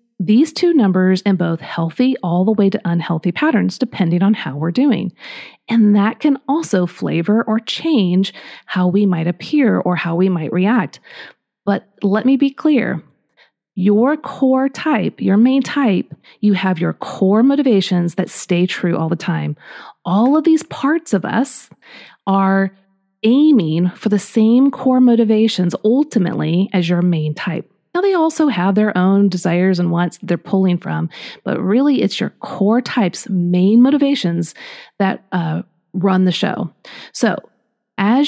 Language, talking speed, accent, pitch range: English, 155 wpm, American, 185-245 Hz